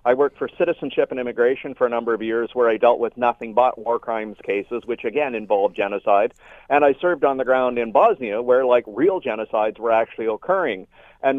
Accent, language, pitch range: American, English, 115-175 Hz